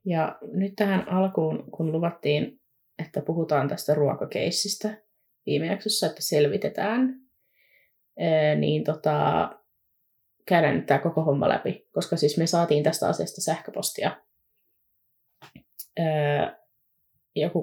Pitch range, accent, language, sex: 150-205 Hz, native, Finnish, female